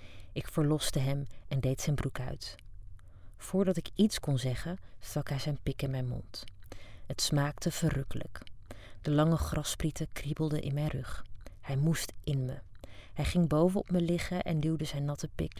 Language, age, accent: Dutch, 30-49, Dutch